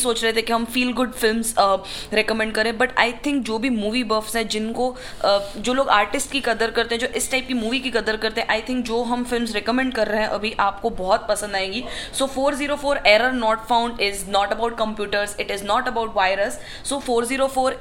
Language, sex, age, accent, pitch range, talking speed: Hindi, female, 20-39, native, 200-235 Hz, 230 wpm